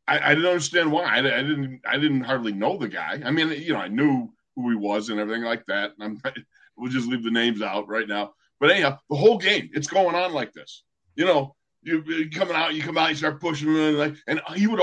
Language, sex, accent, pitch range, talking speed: English, male, American, 125-170 Hz, 260 wpm